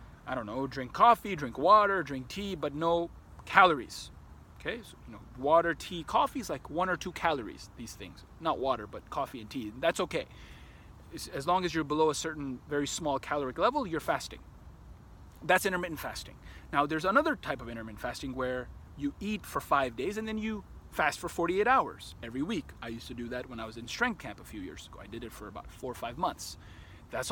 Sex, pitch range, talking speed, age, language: male, 115-170 Hz, 210 wpm, 30-49, English